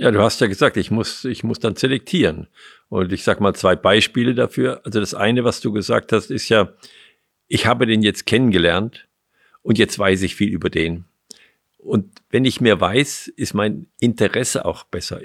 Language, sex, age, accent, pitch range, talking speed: German, male, 50-69, German, 100-125 Hz, 195 wpm